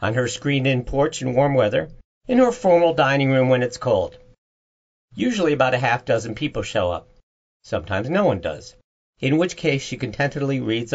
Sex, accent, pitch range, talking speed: male, American, 105-150 Hz, 180 wpm